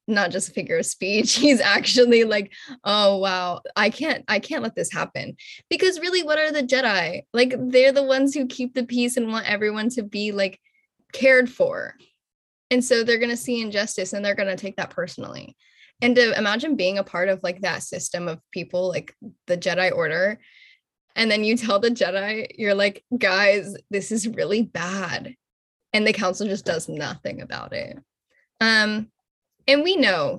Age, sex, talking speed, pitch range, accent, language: 10-29, female, 185 wpm, 185-250 Hz, American, English